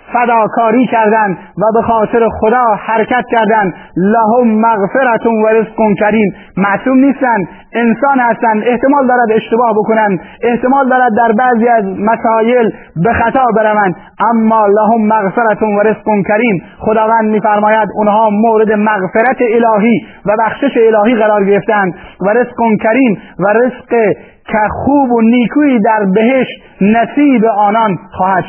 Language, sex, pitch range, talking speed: Persian, male, 210-230 Hz, 130 wpm